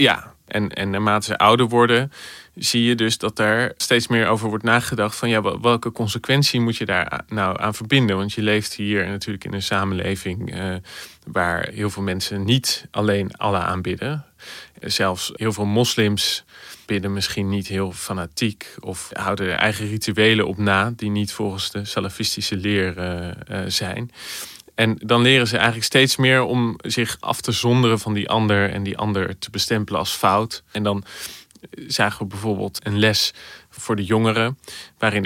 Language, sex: Dutch, male